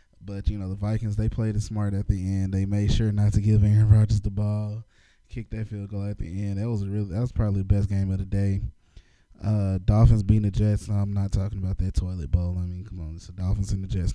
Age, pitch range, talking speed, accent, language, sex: 20-39, 95-110 Hz, 270 wpm, American, English, male